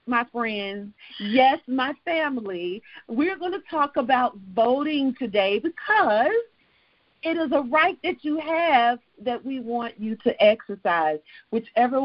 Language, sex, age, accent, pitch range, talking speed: English, female, 40-59, American, 205-280 Hz, 135 wpm